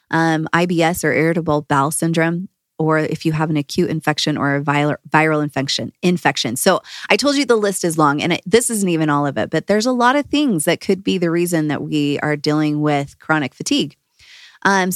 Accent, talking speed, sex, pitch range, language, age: American, 215 wpm, female, 155-195 Hz, English, 20-39